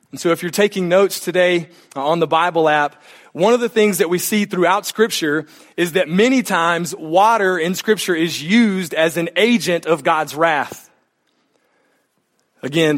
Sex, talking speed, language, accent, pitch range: male, 165 wpm, English, American, 145-190 Hz